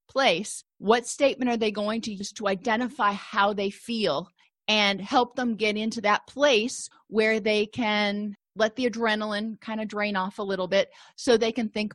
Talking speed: 185 wpm